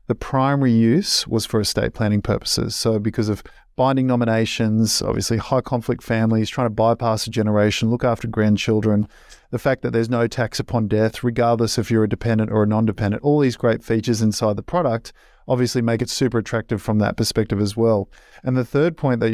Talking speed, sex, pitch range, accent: 195 wpm, male, 110-125 Hz, Australian